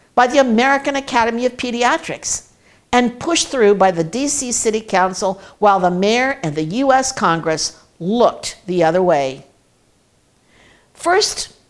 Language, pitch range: English, 175-245 Hz